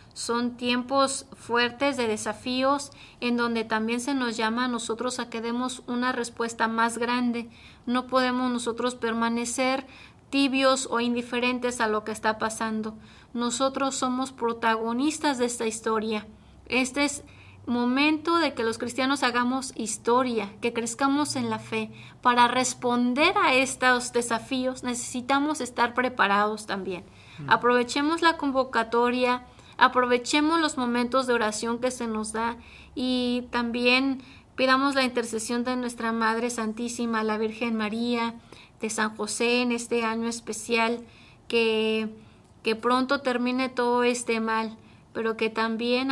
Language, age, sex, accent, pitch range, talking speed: Spanish, 30-49, female, Mexican, 225-255 Hz, 135 wpm